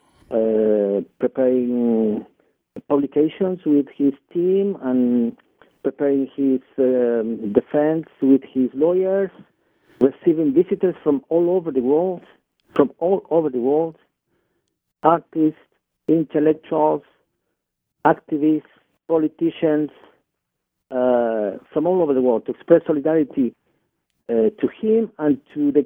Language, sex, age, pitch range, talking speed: English, male, 50-69, 120-160 Hz, 105 wpm